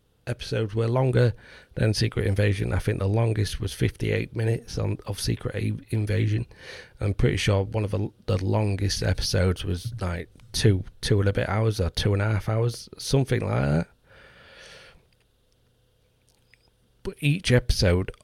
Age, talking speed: 40-59, 150 wpm